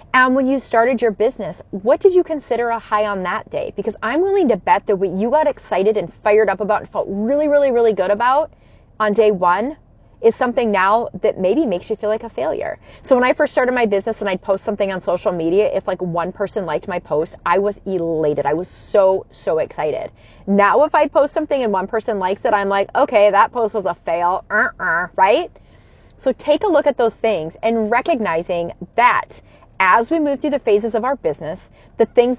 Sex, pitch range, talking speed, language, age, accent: female, 200-245 Hz, 225 wpm, English, 30-49, American